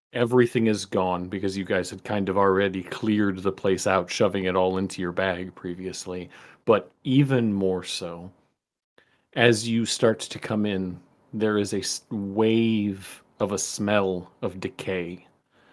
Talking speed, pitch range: 155 wpm, 95-110 Hz